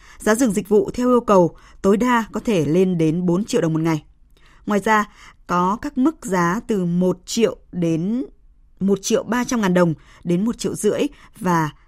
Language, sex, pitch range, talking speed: Vietnamese, female, 170-220 Hz, 185 wpm